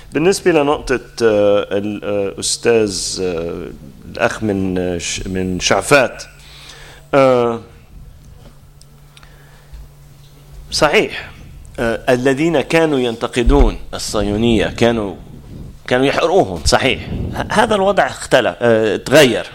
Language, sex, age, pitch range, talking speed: English, male, 30-49, 100-140 Hz, 55 wpm